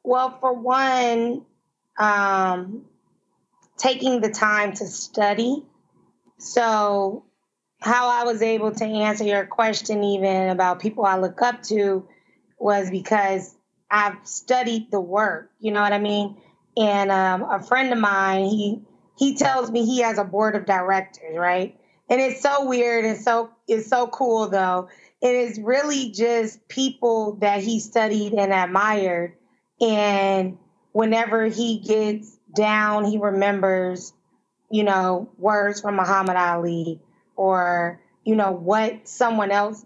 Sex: female